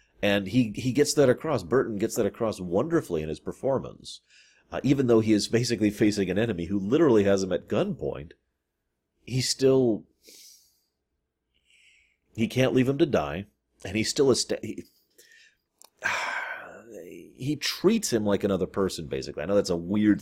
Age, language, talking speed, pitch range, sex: 40-59, English, 170 wpm, 85-125 Hz, male